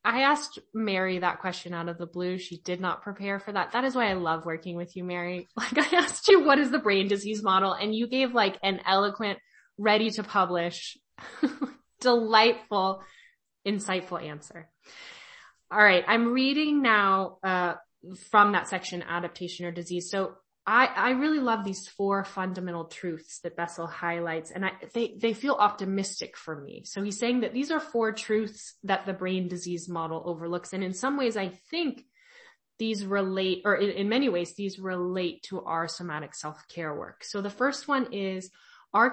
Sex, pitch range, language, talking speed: female, 175-225 Hz, English, 180 wpm